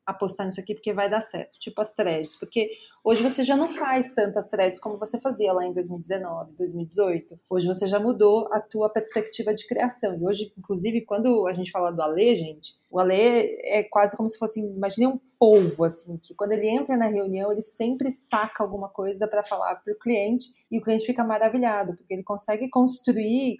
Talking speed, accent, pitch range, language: 200 wpm, Brazilian, 195-230 Hz, Portuguese